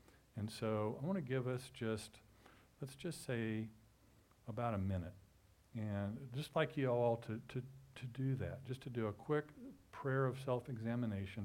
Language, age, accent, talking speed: English, 50-69, American, 175 wpm